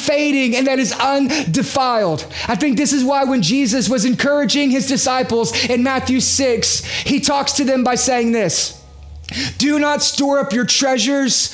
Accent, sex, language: American, male, English